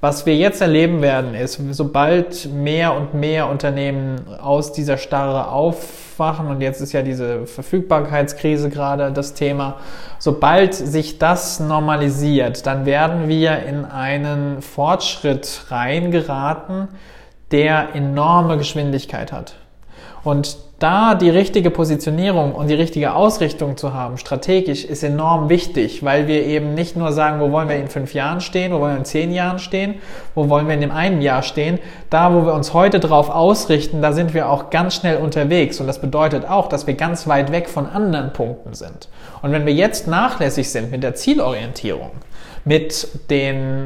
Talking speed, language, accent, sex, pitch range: 165 wpm, German, German, male, 140-165 Hz